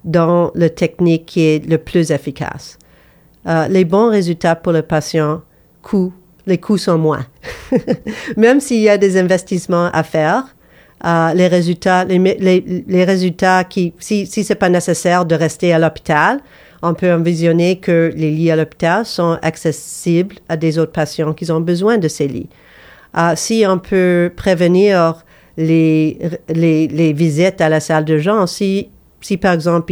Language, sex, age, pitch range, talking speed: English, female, 50-69, 160-185 Hz, 170 wpm